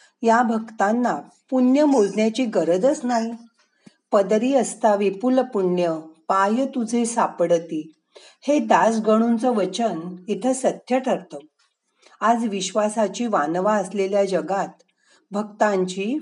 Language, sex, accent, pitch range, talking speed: Marathi, female, native, 185-245 Hz, 95 wpm